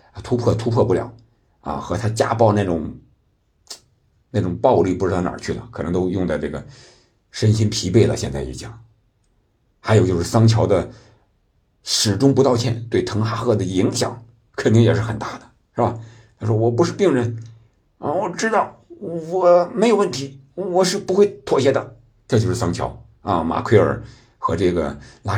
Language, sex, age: Chinese, male, 50-69